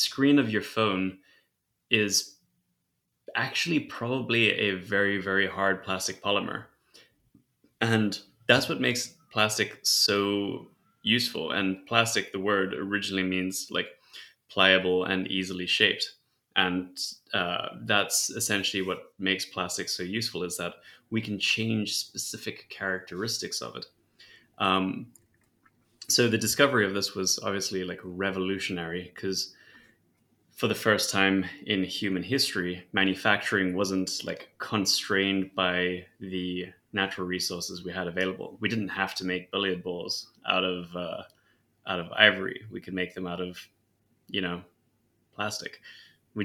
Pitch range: 90-100 Hz